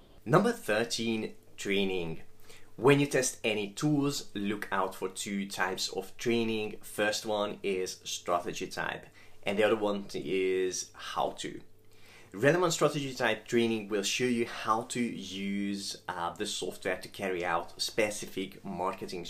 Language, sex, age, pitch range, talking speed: English, male, 20-39, 95-120 Hz, 140 wpm